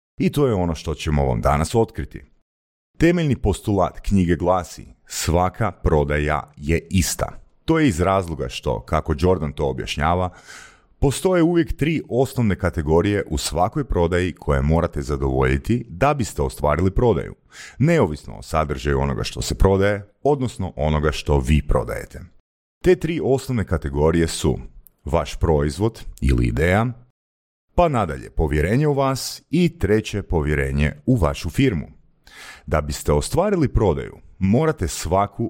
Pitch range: 75-110 Hz